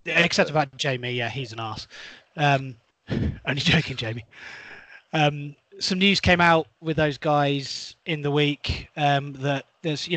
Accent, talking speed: British, 155 wpm